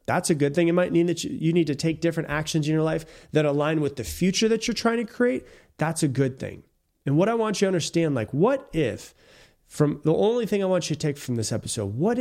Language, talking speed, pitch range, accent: English, 265 wpm, 125-175 Hz, American